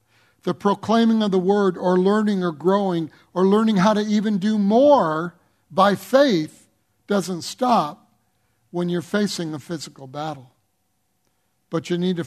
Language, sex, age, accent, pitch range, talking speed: English, male, 60-79, American, 150-215 Hz, 145 wpm